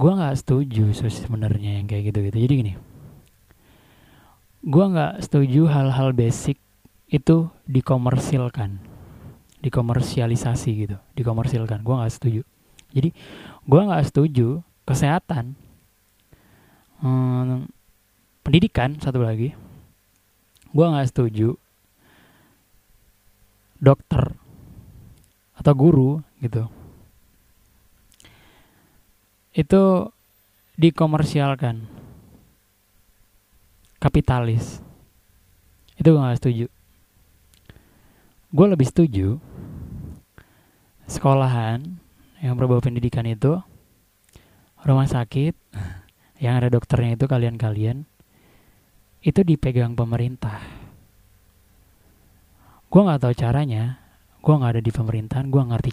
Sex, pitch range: male, 105-135 Hz